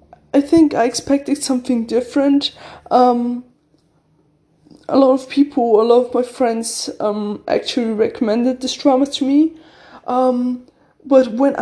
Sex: female